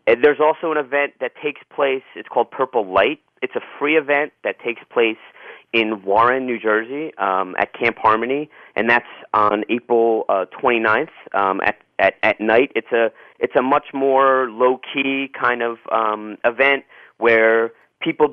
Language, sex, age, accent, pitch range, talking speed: English, male, 40-59, American, 110-140 Hz, 165 wpm